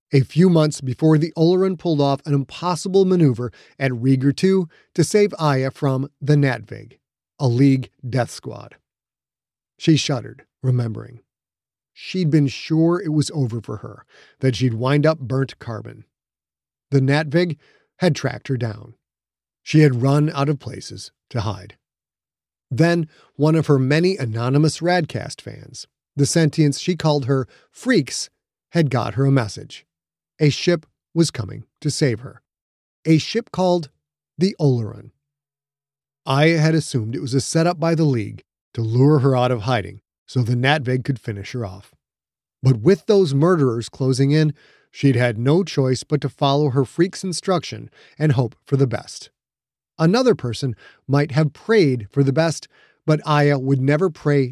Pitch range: 120-155 Hz